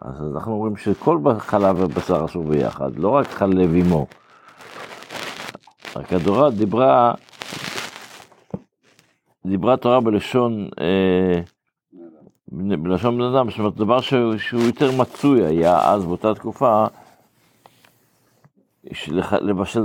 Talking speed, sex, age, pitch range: 95 wpm, male, 60-79, 95-120 Hz